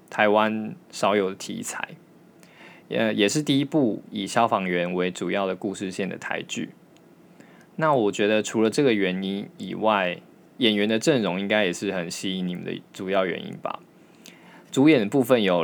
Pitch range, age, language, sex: 90-115 Hz, 20-39, Chinese, male